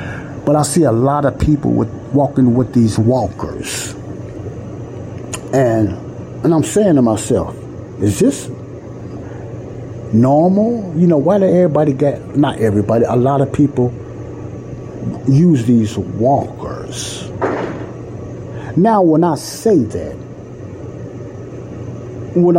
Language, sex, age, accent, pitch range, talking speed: English, male, 50-69, American, 115-145 Hz, 110 wpm